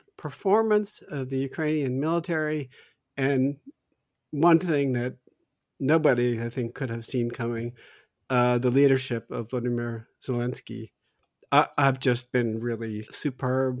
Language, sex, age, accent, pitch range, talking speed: English, male, 50-69, American, 120-140 Hz, 120 wpm